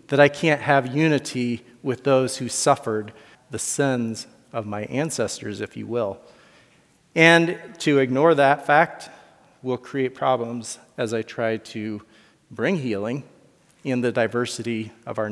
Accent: American